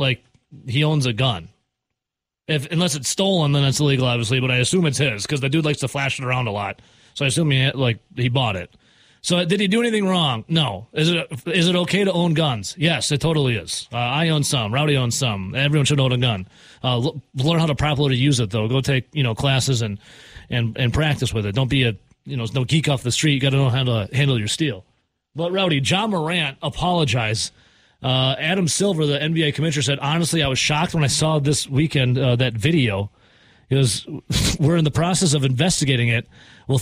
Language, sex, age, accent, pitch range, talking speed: English, male, 30-49, American, 125-160 Hz, 230 wpm